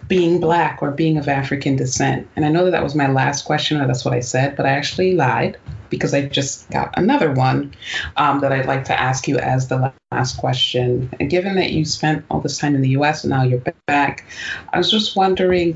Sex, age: female, 30-49